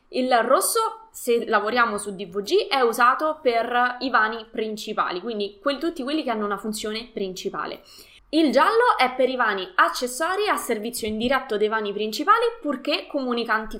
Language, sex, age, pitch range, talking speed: Italian, female, 20-39, 205-285 Hz, 155 wpm